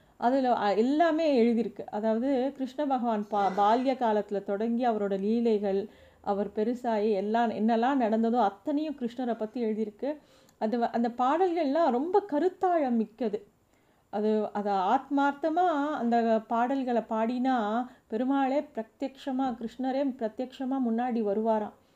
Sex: female